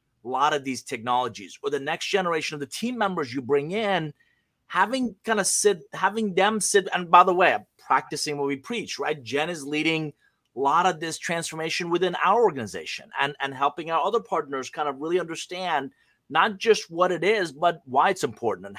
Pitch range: 150-205 Hz